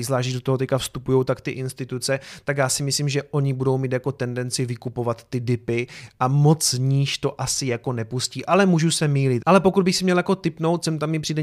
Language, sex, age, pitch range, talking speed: Czech, male, 30-49, 125-150 Hz, 225 wpm